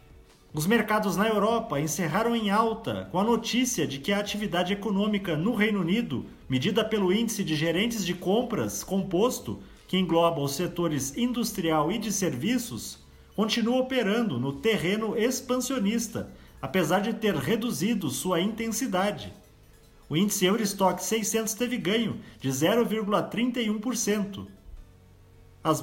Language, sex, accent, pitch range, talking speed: Portuguese, male, Brazilian, 180-230 Hz, 125 wpm